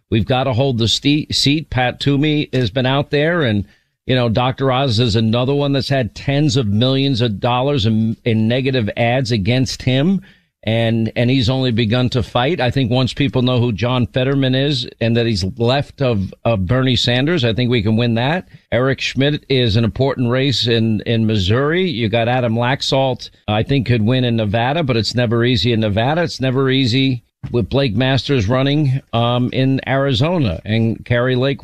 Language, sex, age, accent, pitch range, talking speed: English, male, 50-69, American, 115-140 Hz, 190 wpm